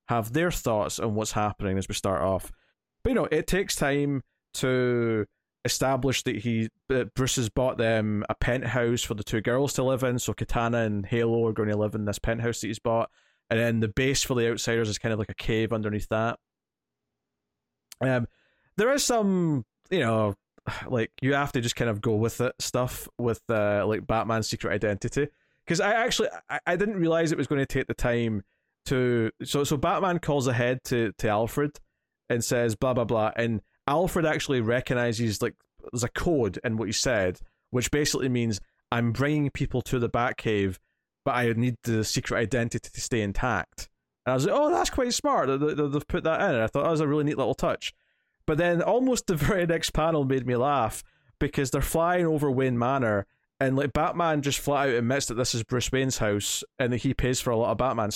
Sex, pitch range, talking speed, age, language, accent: male, 110-140 Hz, 210 wpm, 20-39, English, British